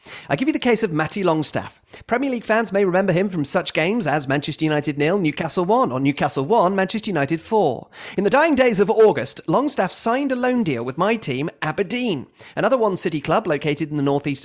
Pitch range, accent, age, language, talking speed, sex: 150-220 Hz, British, 30-49, English, 215 wpm, male